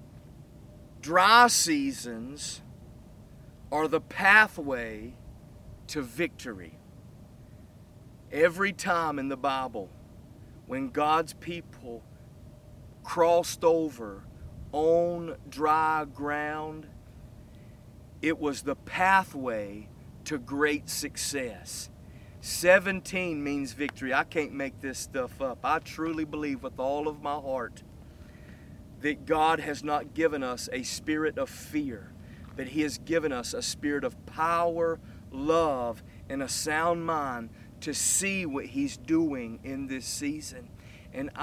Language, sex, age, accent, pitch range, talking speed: English, male, 40-59, American, 120-160 Hz, 110 wpm